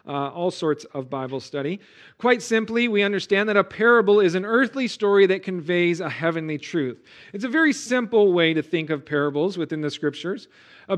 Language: English